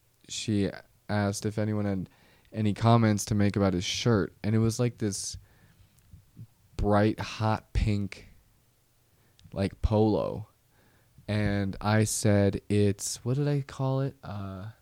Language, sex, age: English, male, 20-39